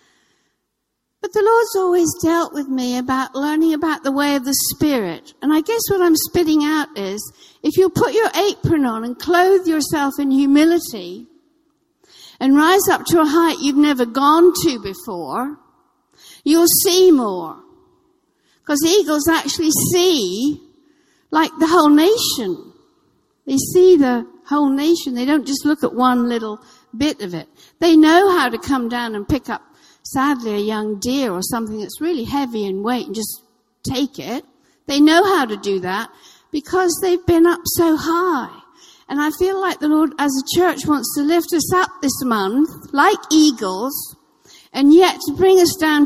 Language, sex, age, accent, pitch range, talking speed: English, female, 60-79, British, 270-345 Hz, 170 wpm